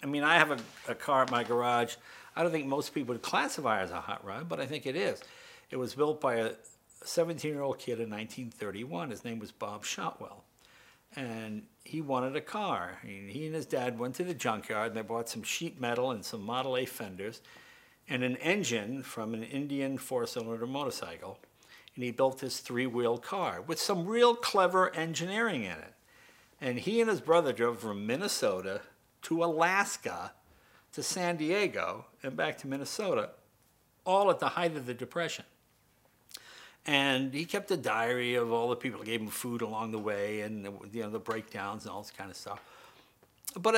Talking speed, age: 190 wpm, 60-79